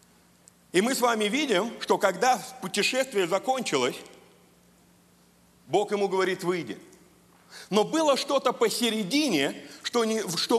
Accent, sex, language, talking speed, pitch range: native, male, Russian, 110 wpm, 190-260 Hz